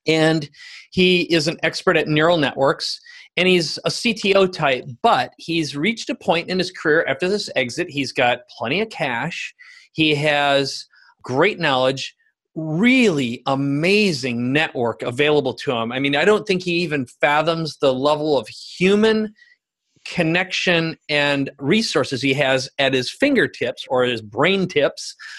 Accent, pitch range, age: American, 140-185 Hz, 30-49